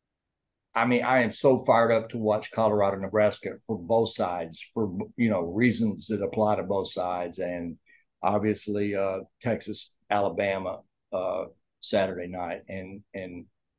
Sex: male